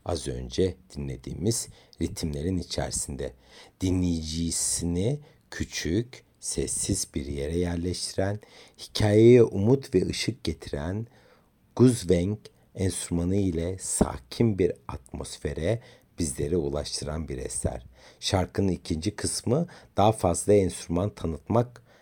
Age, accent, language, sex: 60-79, native, Turkish, male